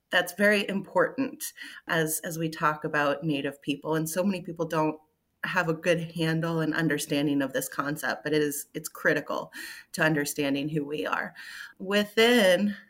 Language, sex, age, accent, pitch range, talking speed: English, female, 30-49, American, 165-220 Hz, 165 wpm